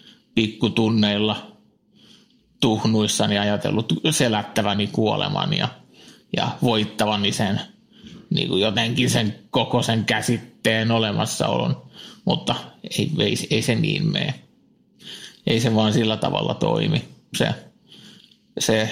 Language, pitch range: Finnish, 110-130 Hz